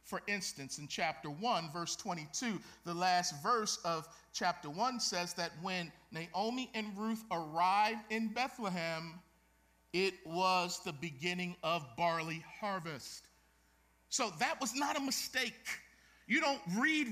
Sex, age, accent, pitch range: male, 50-69, American, 180-245 Hz